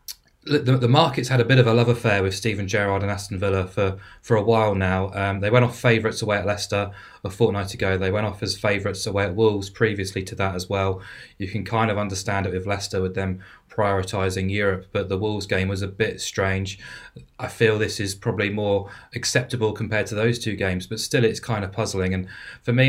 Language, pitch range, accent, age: English, 100-120 Hz, British, 20-39